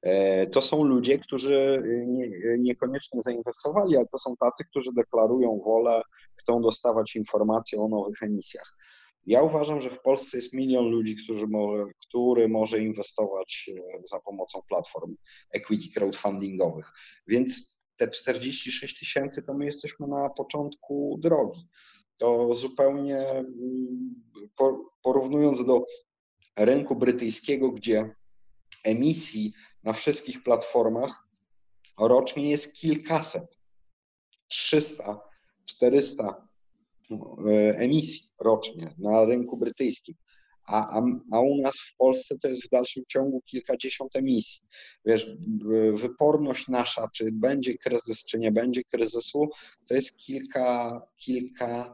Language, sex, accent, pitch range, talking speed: Polish, male, native, 110-140 Hz, 105 wpm